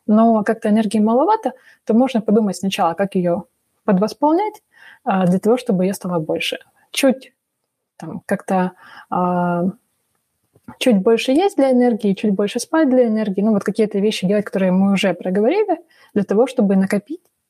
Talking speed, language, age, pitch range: 140 wpm, Russian, 20-39, 195-245 Hz